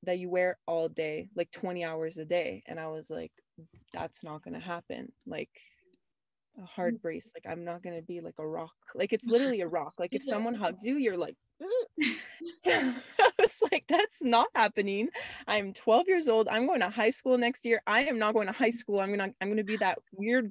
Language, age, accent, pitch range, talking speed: English, 20-39, American, 170-235 Hz, 215 wpm